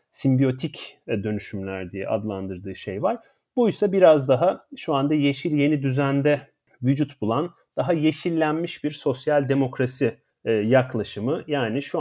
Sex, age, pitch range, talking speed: male, 40-59, 120-150 Hz, 125 wpm